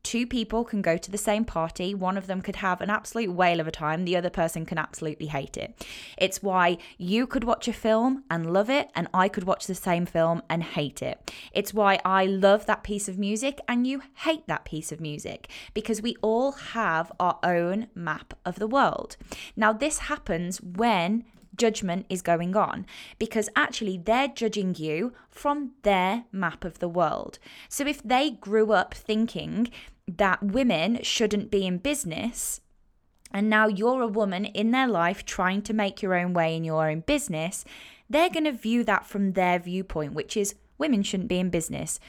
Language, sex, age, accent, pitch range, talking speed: English, female, 10-29, British, 180-230 Hz, 190 wpm